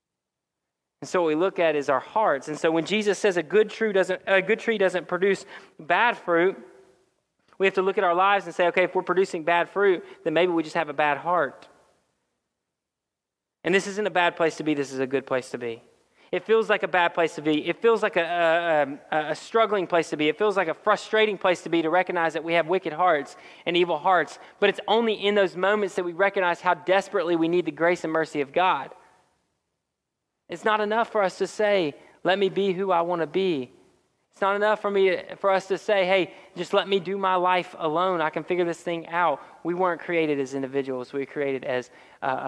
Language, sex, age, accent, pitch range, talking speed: English, male, 20-39, American, 160-195 Hz, 235 wpm